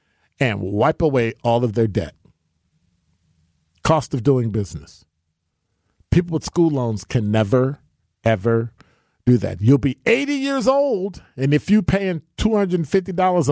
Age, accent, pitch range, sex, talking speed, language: 50-69, American, 110-165 Hz, male, 135 wpm, English